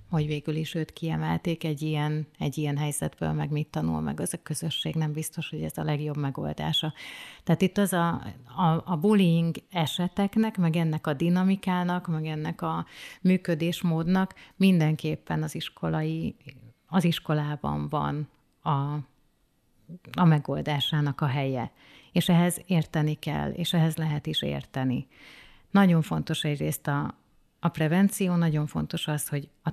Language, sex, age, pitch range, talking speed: Hungarian, female, 30-49, 145-170 Hz, 145 wpm